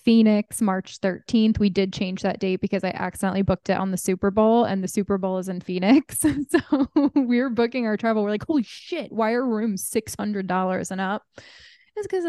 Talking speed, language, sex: 200 wpm, English, female